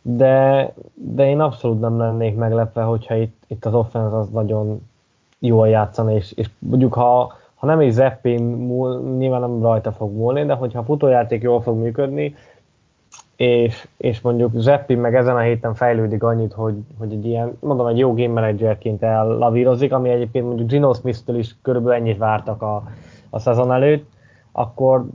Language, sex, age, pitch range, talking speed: Hungarian, male, 10-29, 115-125 Hz, 165 wpm